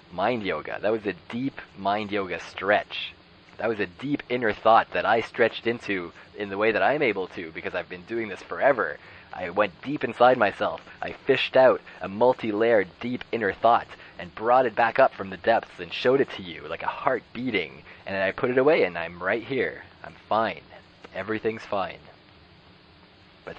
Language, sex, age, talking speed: English, male, 20-39, 195 wpm